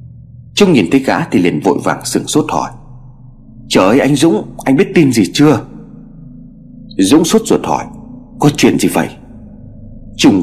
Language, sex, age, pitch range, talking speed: Vietnamese, male, 30-49, 115-140 Hz, 160 wpm